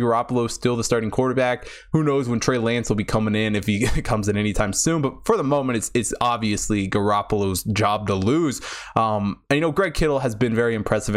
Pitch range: 105-135 Hz